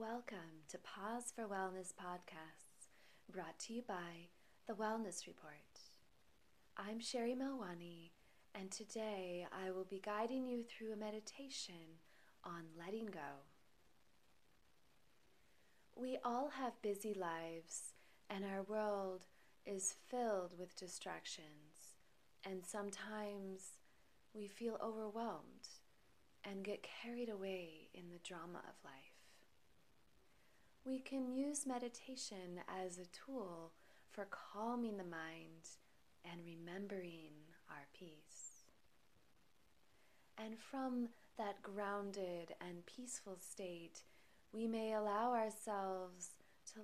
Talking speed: 105 wpm